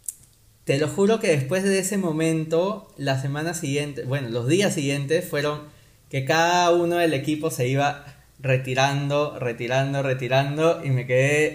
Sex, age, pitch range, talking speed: male, 20-39, 130-170 Hz, 150 wpm